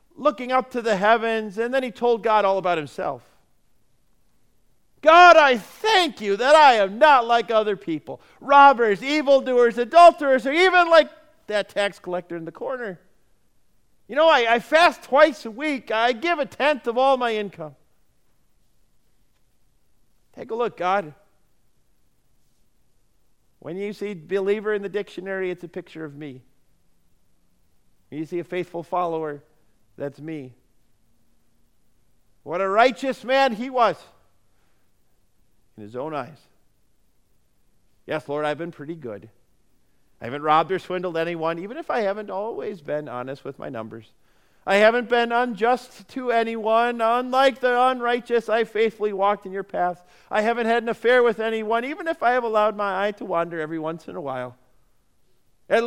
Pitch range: 160-245 Hz